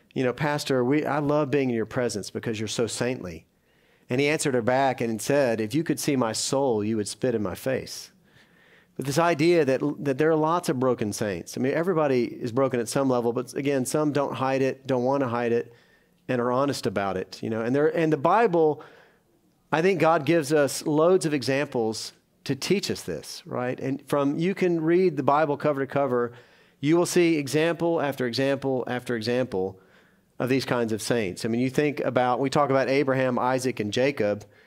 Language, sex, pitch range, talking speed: English, male, 120-145 Hz, 215 wpm